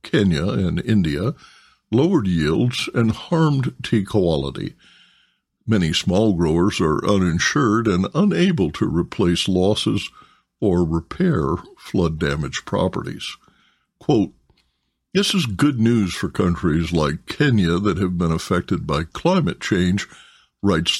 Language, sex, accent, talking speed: English, male, American, 115 wpm